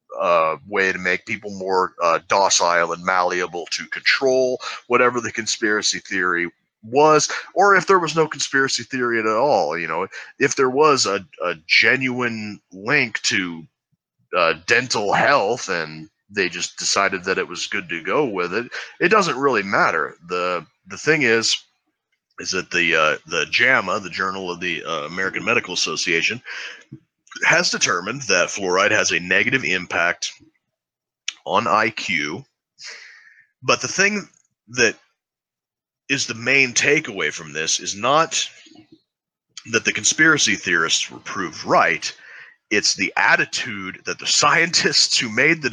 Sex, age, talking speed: male, 30-49, 145 wpm